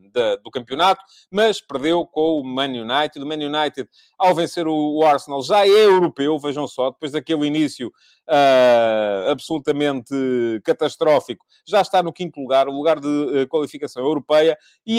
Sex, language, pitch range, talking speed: male, English, 135-165 Hz, 145 wpm